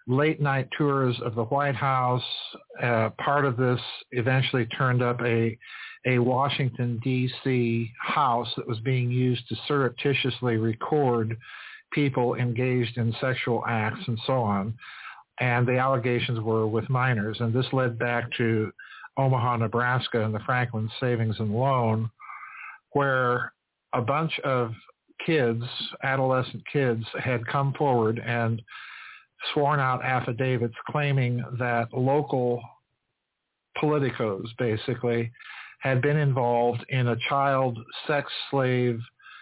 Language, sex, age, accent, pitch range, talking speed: English, male, 50-69, American, 115-135 Hz, 120 wpm